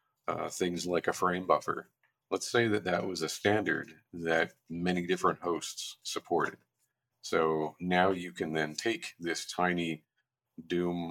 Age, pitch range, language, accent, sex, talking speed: 40-59, 80-95 Hz, English, American, male, 145 wpm